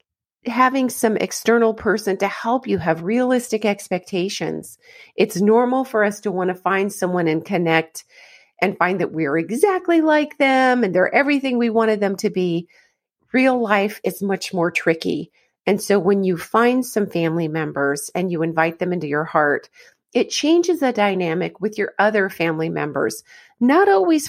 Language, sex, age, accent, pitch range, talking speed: English, female, 40-59, American, 180-250 Hz, 170 wpm